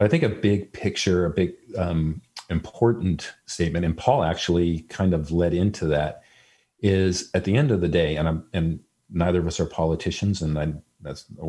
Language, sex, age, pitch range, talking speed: English, male, 40-59, 80-90 Hz, 190 wpm